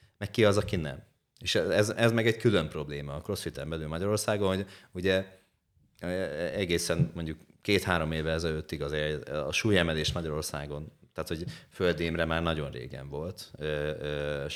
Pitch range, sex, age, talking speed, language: 80-105 Hz, male, 30-49, 145 wpm, Hungarian